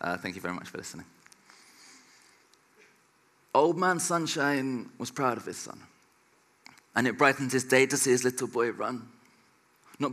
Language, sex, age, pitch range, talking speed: Arabic, male, 30-49, 125-145 Hz, 160 wpm